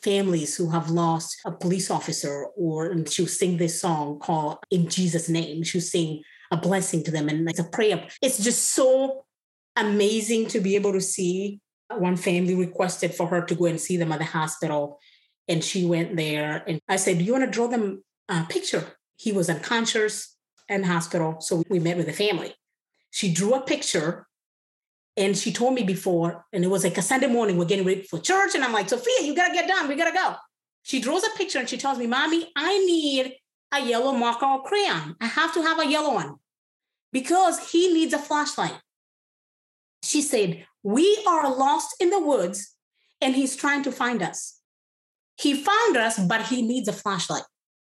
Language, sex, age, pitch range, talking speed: English, female, 30-49, 175-270 Hz, 200 wpm